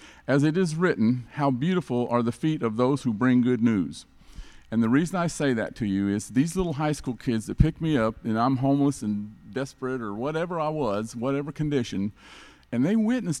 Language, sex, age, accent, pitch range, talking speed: English, male, 50-69, American, 125-180 Hz, 210 wpm